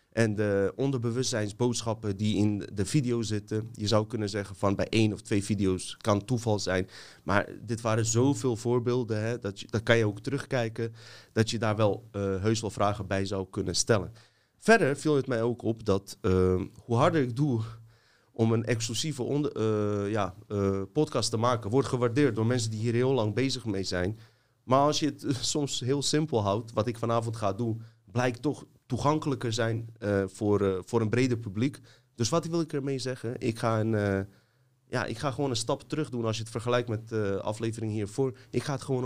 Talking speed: 200 wpm